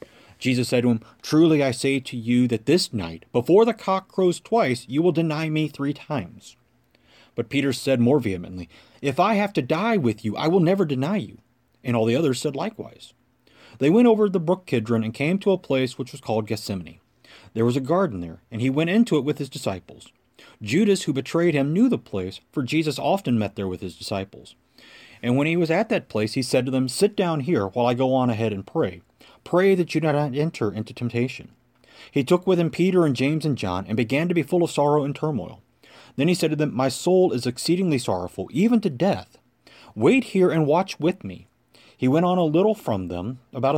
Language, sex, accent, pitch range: English, male, American, 120-175 Hz